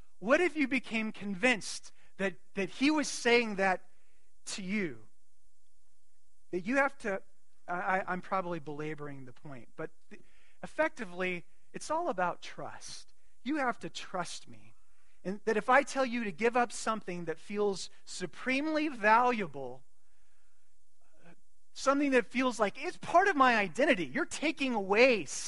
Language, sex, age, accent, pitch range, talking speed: English, male, 30-49, American, 165-225 Hz, 140 wpm